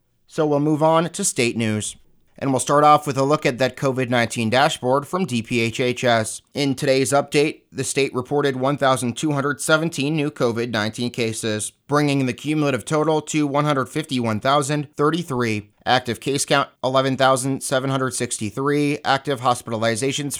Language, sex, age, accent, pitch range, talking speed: English, male, 30-49, American, 120-145 Hz, 125 wpm